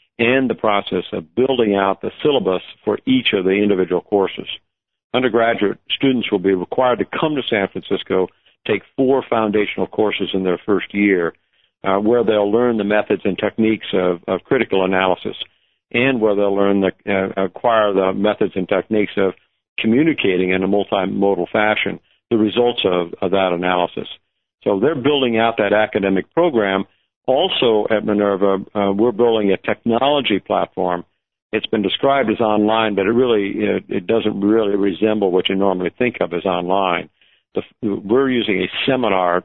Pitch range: 95-115 Hz